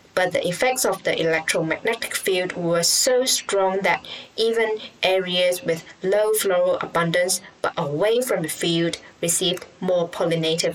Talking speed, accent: 140 wpm, Malaysian